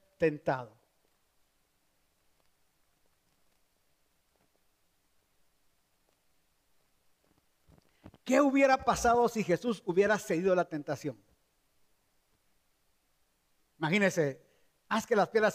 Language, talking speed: Spanish, 60 wpm